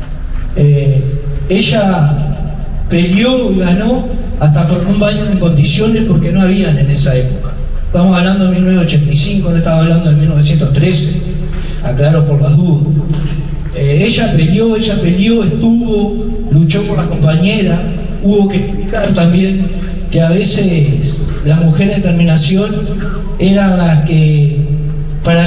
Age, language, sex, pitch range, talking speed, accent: 40-59, Spanish, male, 155-200 Hz, 130 wpm, Argentinian